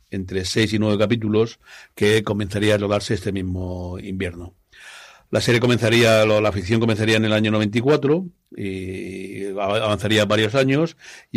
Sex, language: male, Spanish